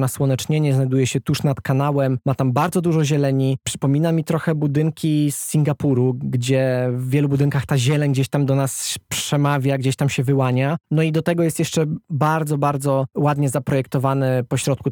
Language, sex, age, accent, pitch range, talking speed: Polish, male, 20-39, native, 120-145 Hz, 175 wpm